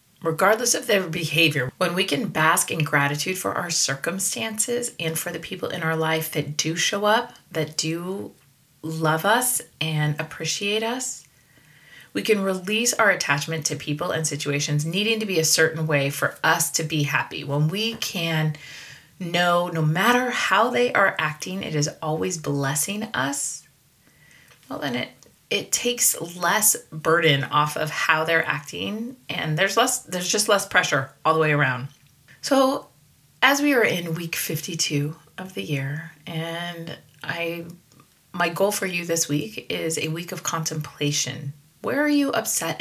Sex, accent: female, American